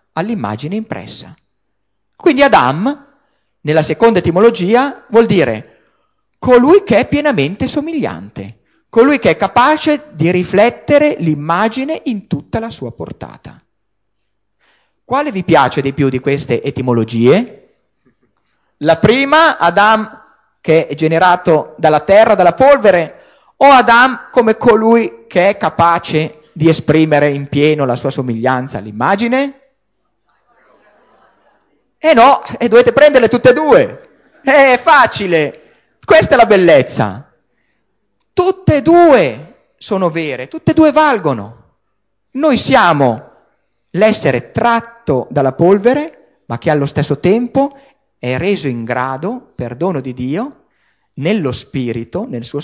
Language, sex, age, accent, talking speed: Italian, male, 30-49, native, 120 wpm